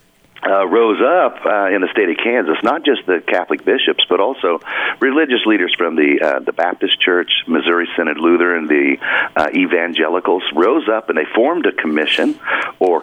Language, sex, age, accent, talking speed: English, male, 40-59, American, 175 wpm